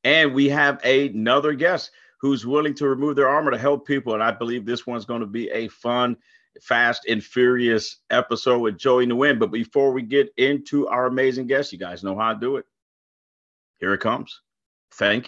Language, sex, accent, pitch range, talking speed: English, male, American, 115-140 Hz, 195 wpm